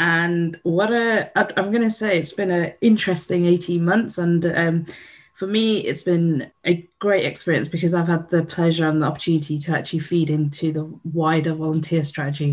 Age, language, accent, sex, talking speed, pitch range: 20-39, English, British, female, 180 wpm, 150-170 Hz